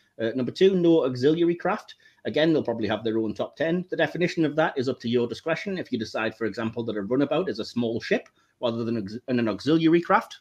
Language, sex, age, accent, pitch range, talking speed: English, male, 30-49, British, 110-145 Hz, 235 wpm